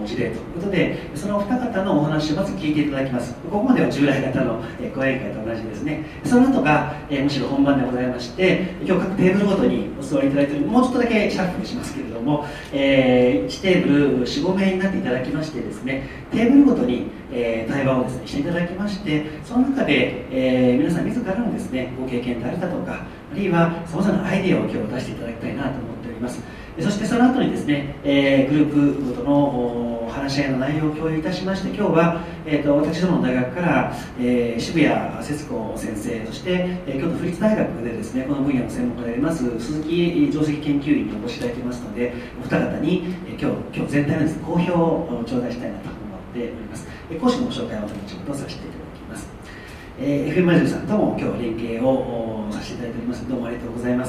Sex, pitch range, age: male, 125-175 Hz, 40-59